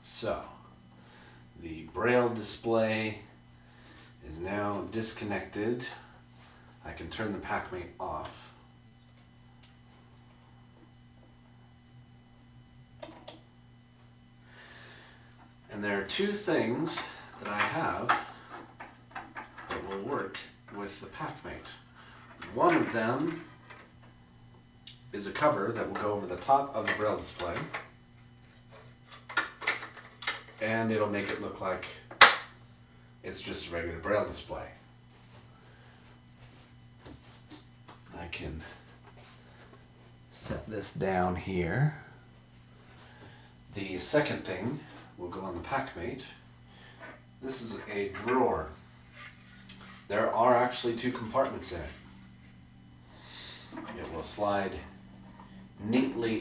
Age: 40-59